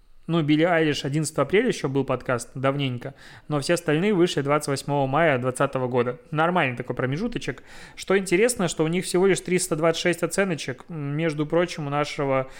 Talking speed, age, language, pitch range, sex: 155 wpm, 20-39, Russian, 135-160 Hz, male